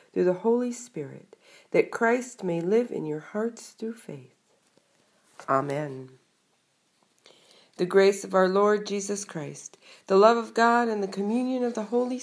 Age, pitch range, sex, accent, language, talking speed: 50-69, 170-225 Hz, female, American, English, 150 wpm